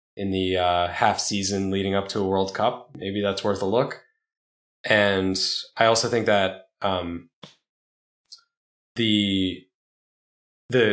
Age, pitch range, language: 10-29, 90-110 Hz, English